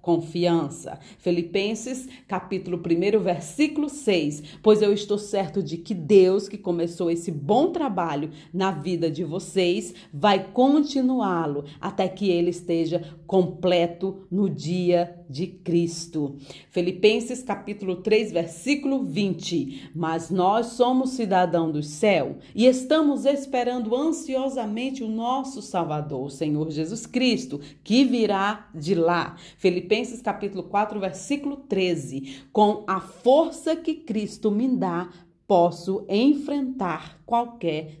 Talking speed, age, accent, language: 115 wpm, 40-59, Brazilian, Portuguese